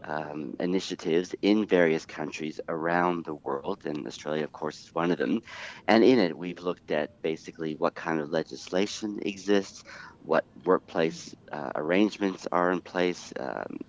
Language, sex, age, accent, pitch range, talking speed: English, male, 50-69, American, 80-100 Hz, 155 wpm